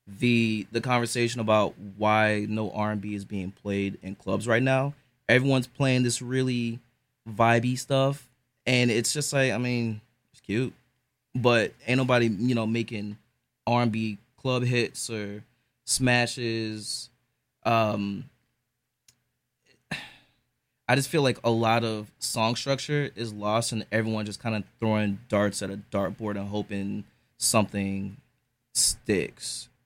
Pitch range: 105-125 Hz